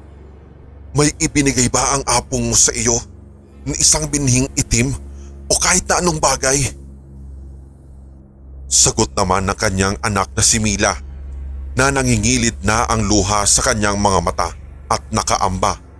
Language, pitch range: English, 75-125 Hz